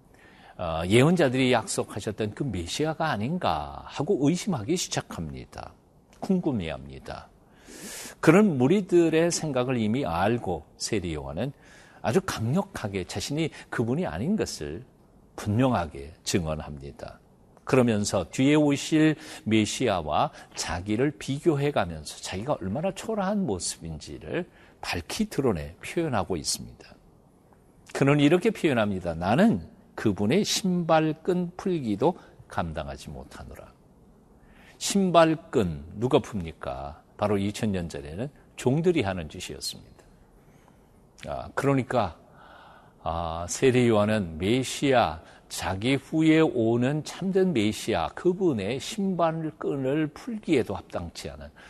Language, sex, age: Korean, male, 50-69